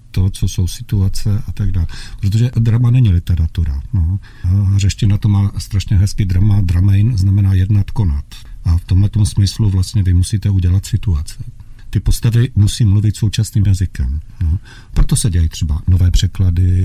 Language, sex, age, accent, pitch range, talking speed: Czech, male, 50-69, native, 95-115 Hz, 165 wpm